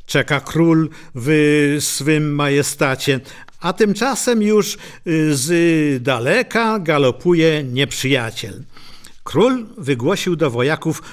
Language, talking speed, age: English, 85 wpm, 50-69